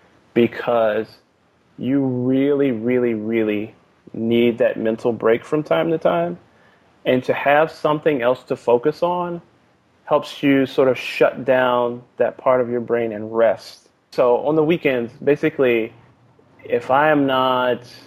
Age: 20-39